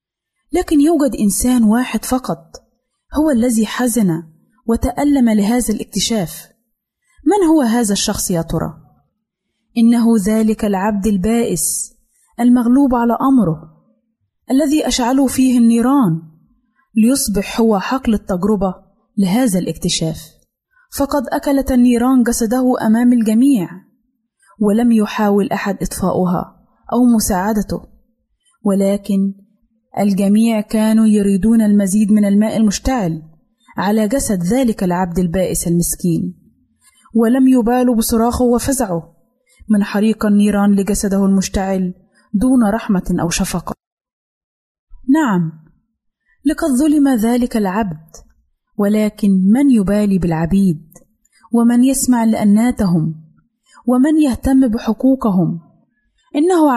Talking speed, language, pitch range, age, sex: 95 wpm, Arabic, 195-245 Hz, 20-39, female